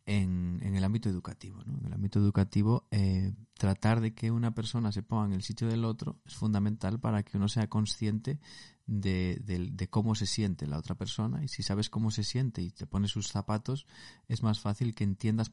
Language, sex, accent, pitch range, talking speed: Spanish, male, Spanish, 100-120 Hz, 215 wpm